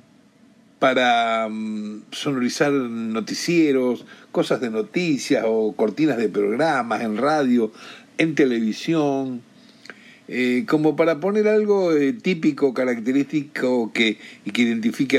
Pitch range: 115-160 Hz